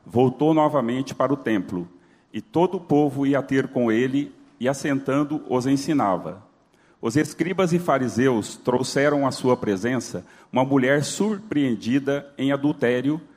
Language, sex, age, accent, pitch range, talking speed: Portuguese, male, 40-59, Brazilian, 125-150 Hz, 135 wpm